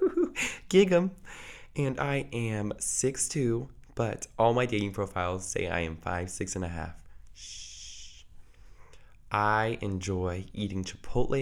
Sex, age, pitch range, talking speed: male, 20-39, 90-115 Hz, 115 wpm